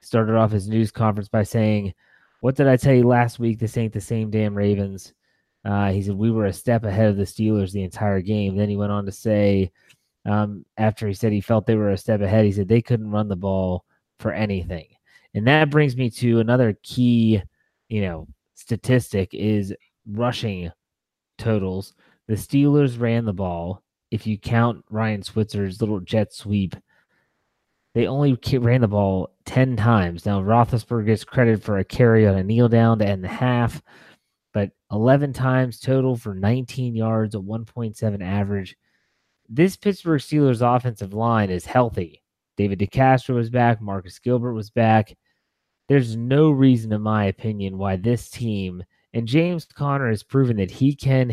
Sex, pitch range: male, 100-120 Hz